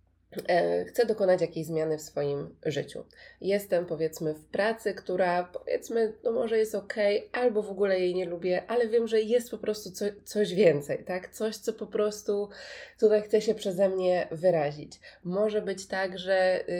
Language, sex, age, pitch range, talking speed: Polish, female, 20-39, 160-205 Hz, 165 wpm